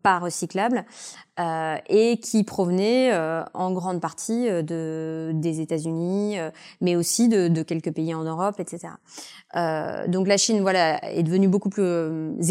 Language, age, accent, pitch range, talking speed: French, 20-39, French, 165-200 Hz, 155 wpm